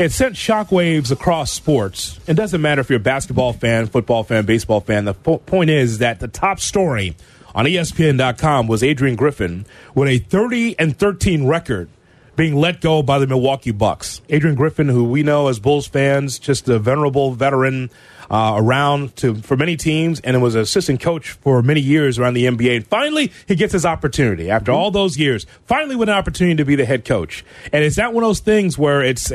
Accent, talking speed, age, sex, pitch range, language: American, 200 wpm, 30-49, male, 125-165 Hz, English